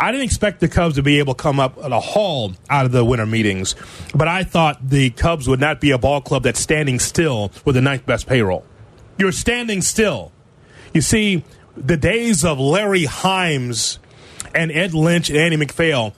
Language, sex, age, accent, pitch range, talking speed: English, male, 30-49, American, 130-185 Hz, 200 wpm